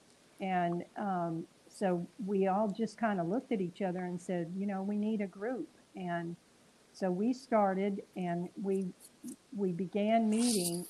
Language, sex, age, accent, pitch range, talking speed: English, female, 50-69, American, 175-200 Hz, 160 wpm